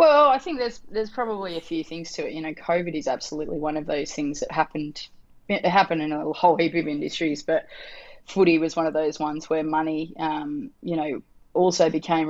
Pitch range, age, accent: 155-170 Hz, 20-39, Australian